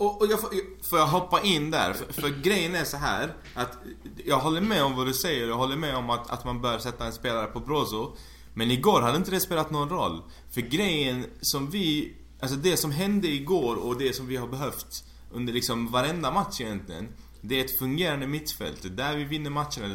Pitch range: 120-155 Hz